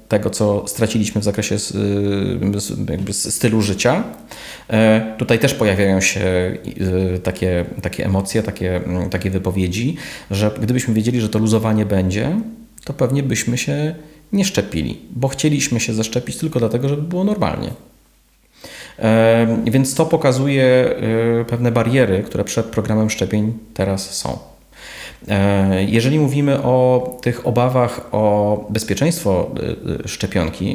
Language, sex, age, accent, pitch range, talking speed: Polish, male, 30-49, native, 100-125 Hz, 115 wpm